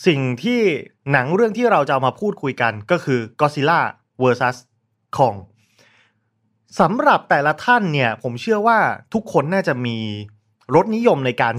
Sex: male